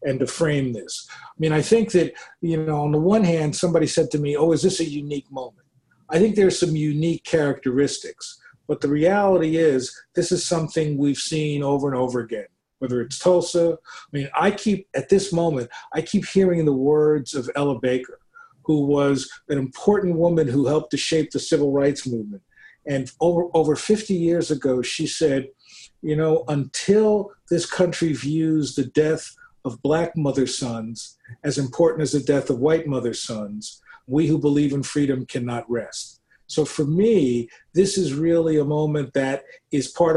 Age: 40-59